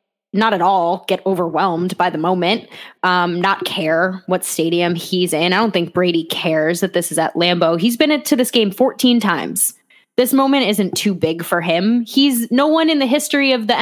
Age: 10-29